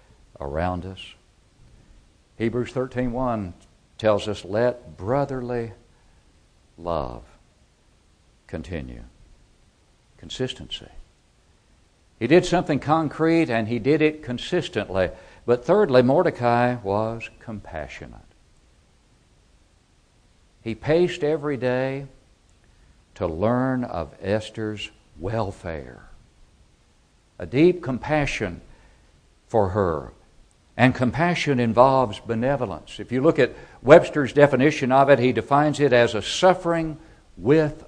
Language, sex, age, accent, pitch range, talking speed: English, male, 60-79, American, 95-130 Hz, 95 wpm